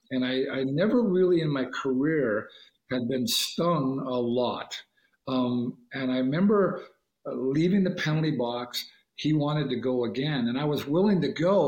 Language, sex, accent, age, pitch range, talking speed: English, male, American, 50-69, 125-160 Hz, 165 wpm